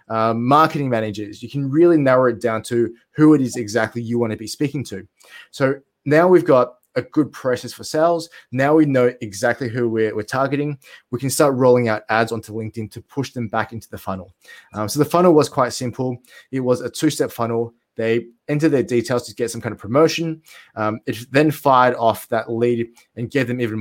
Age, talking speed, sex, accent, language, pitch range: 20-39, 215 wpm, male, Australian, English, 110-135 Hz